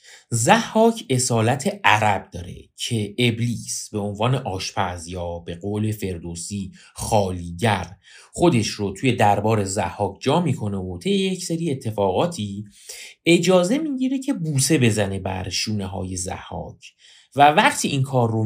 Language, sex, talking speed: Persian, male, 130 wpm